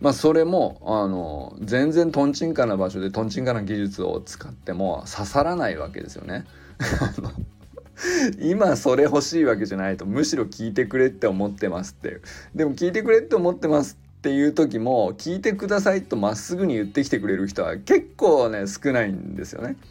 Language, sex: Japanese, male